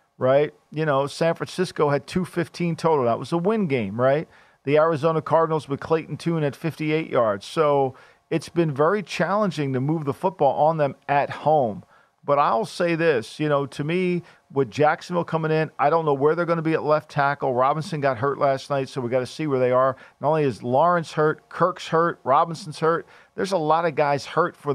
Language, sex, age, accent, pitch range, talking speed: English, male, 50-69, American, 135-165 Hz, 215 wpm